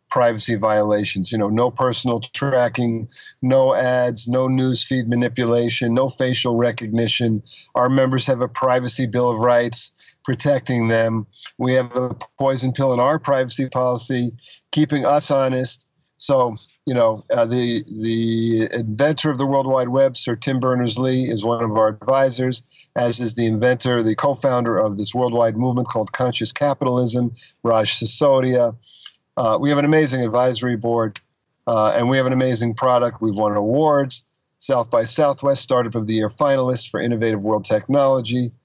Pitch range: 115-135 Hz